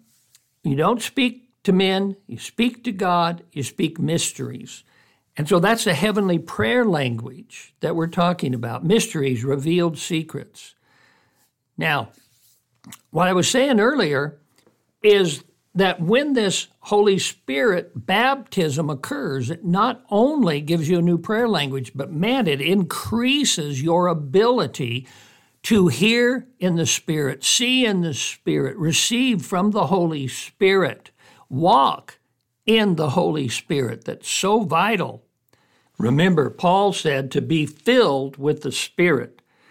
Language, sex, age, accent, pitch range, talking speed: English, male, 60-79, American, 140-200 Hz, 130 wpm